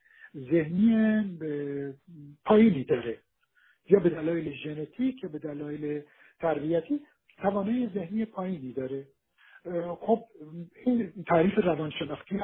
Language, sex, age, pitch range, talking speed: Persian, male, 50-69, 155-215 Hz, 90 wpm